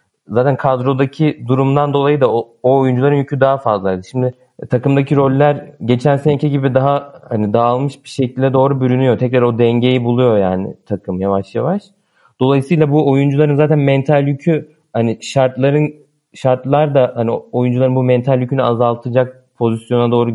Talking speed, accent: 145 wpm, native